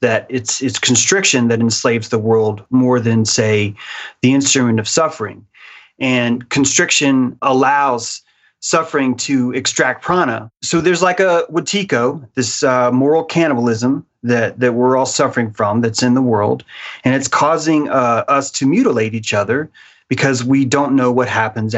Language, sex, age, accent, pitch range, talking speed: English, male, 30-49, American, 120-145 Hz, 155 wpm